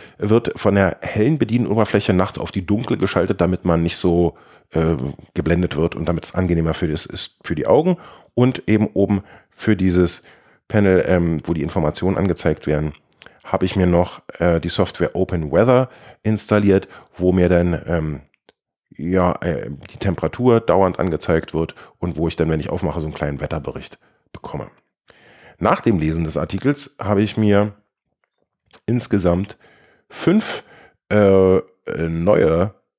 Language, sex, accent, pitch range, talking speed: German, male, German, 85-110 Hz, 145 wpm